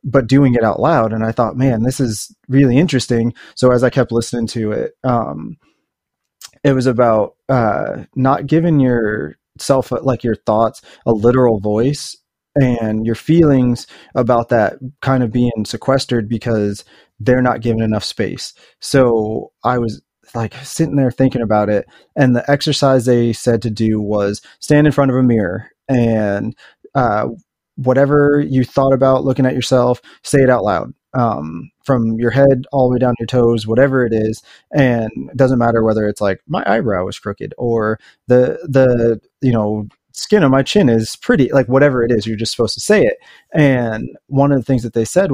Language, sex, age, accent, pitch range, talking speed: English, male, 30-49, American, 115-135 Hz, 185 wpm